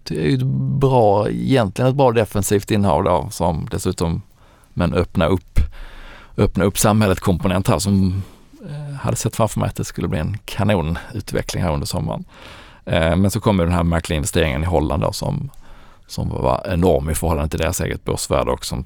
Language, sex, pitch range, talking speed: Swedish, male, 80-105 Hz, 175 wpm